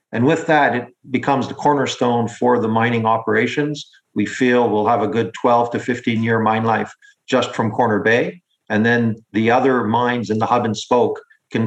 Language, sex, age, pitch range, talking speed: English, male, 50-69, 115-140 Hz, 190 wpm